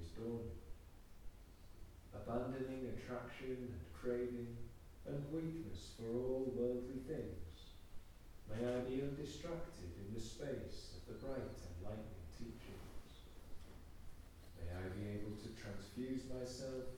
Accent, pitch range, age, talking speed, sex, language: British, 80-125 Hz, 50-69, 105 wpm, male, English